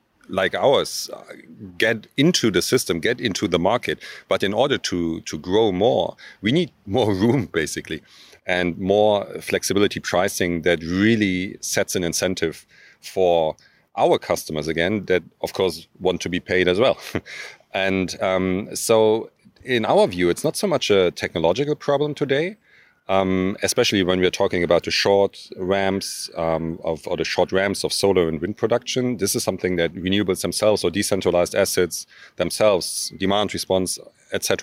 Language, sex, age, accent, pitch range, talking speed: English, male, 40-59, German, 85-105 Hz, 160 wpm